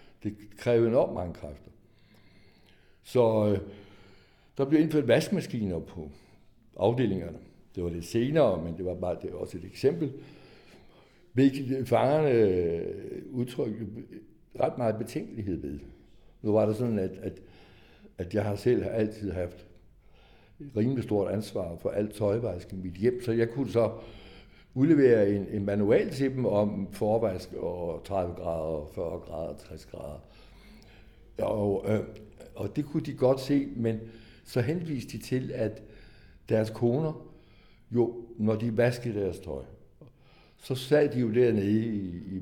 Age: 60-79